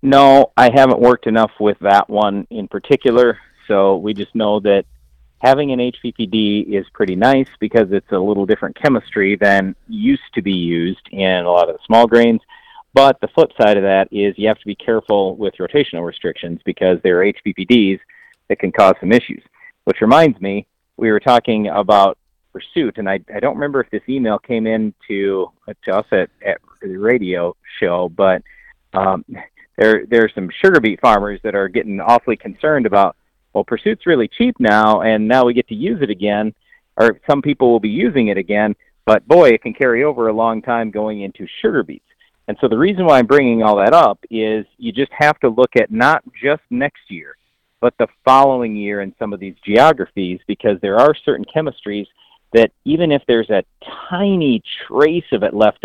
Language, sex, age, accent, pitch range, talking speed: English, male, 40-59, American, 100-130 Hz, 195 wpm